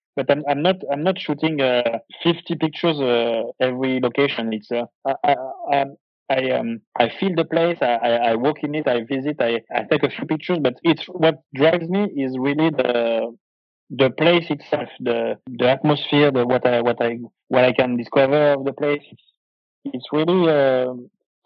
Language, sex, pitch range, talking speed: English, male, 125-155 Hz, 185 wpm